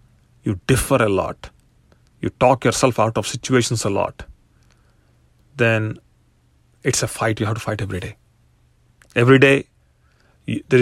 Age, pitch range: 30-49, 110-130 Hz